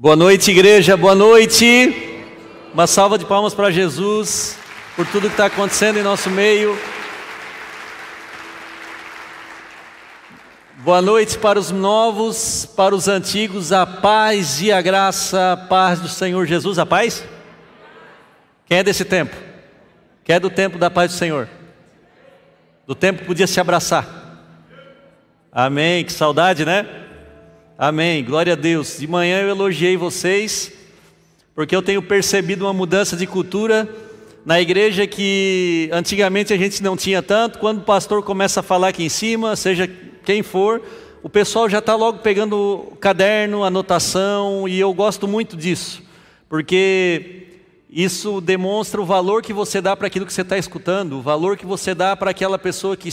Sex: male